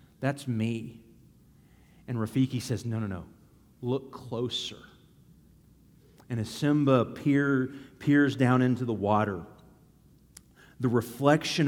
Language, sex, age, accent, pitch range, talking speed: English, male, 40-59, American, 120-155 Hz, 110 wpm